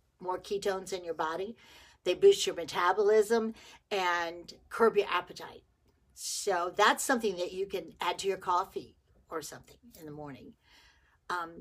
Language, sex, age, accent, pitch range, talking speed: English, female, 50-69, American, 170-230 Hz, 150 wpm